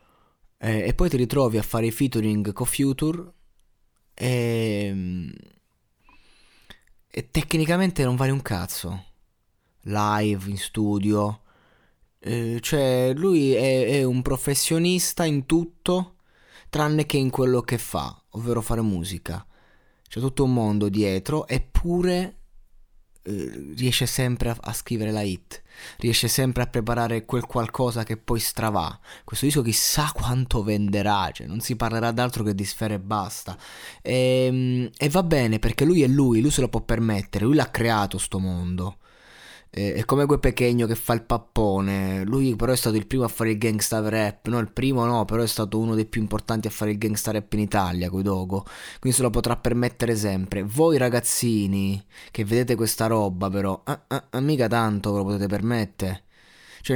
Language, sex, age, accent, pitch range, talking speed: Italian, male, 20-39, native, 105-130 Hz, 160 wpm